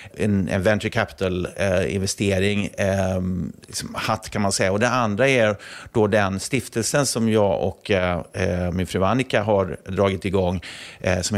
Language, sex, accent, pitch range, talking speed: Swedish, male, native, 95-115 Hz, 135 wpm